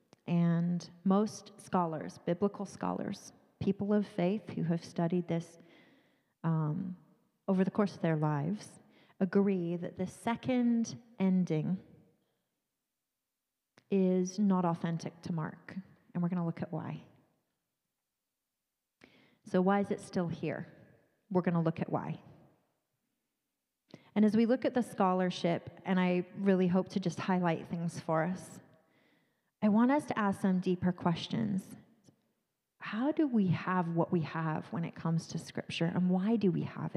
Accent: American